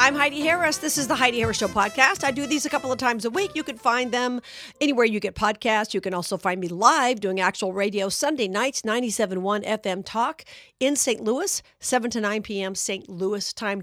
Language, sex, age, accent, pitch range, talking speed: English, female, 50-69, American, 180-230 Hz, 220 wpm